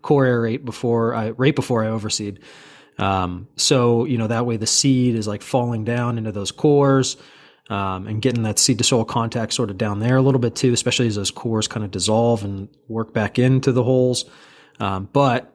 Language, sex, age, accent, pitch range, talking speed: English, male, 20-39, American, 105-130 Hz, 210 wpm